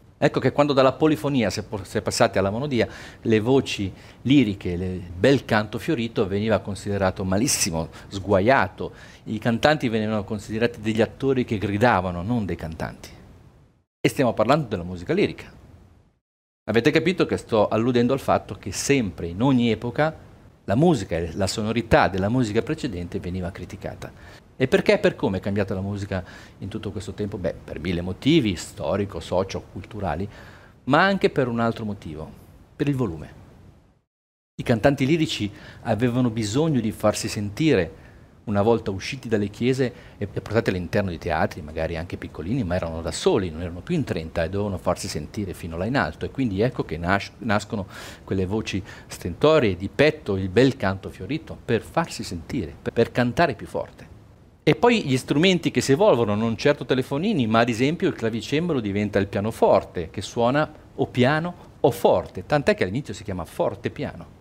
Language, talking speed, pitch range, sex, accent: Italian, 170 wpm, 95-130 Hz, male, native